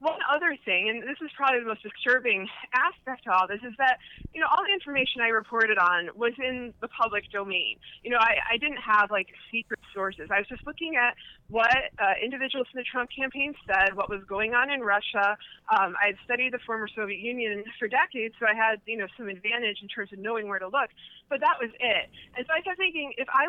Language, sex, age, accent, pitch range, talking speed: English, female, 20-39, American, 215-290 Hz, 235 wpm